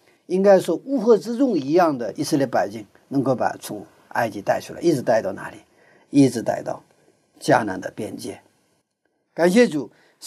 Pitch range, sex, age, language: 145-230 Hz, male, 50-69, Chinese